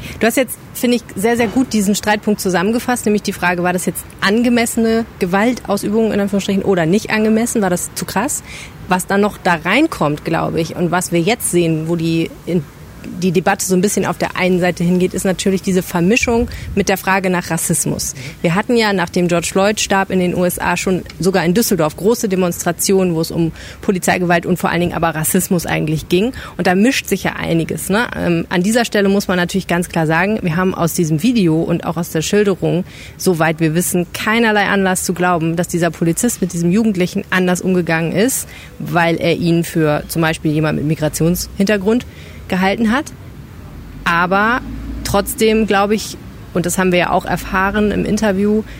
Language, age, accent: German, 30-49, German